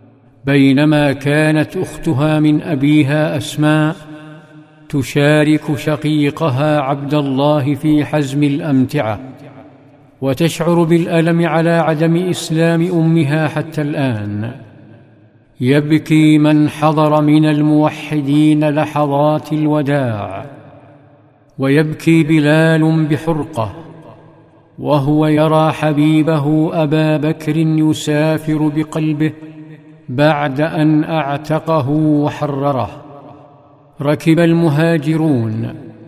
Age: 50-69